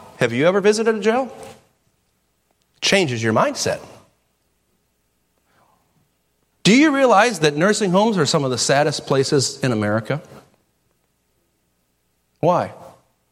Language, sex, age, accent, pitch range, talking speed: English, male, 40-59, American, 125-210 Hz, 110 wpm